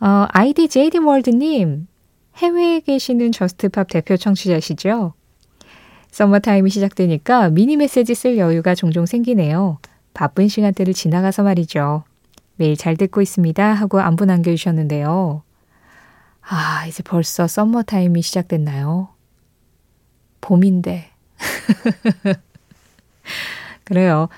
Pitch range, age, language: 170-225 Hz, 20-39, Korean